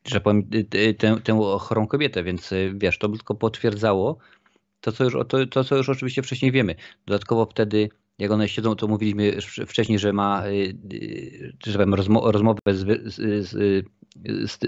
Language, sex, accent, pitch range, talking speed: Polish, male, native, 95-110 Hz, 155 wpm